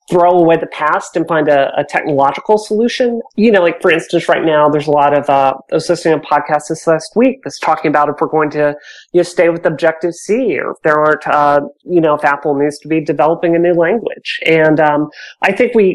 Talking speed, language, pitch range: 230 wpm, English, 155-190 Hz